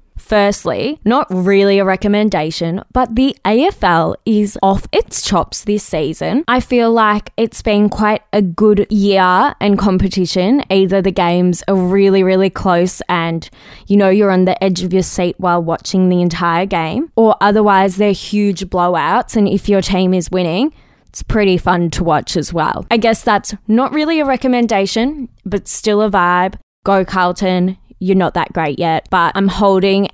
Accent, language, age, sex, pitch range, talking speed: Australian, English, 20-39, female, 180-215 Hz, 170 wpm